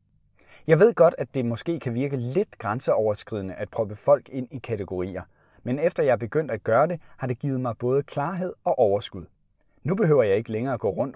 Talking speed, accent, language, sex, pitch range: 210 wpm, native, Danish, male, 110-150 Hz